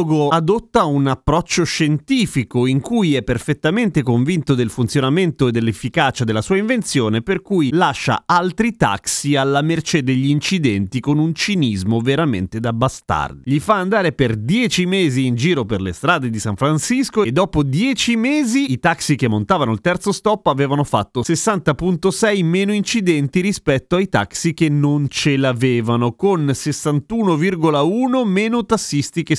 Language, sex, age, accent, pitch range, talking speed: Italian, male, 30-49, native, 125-180 Hz, 150 wpm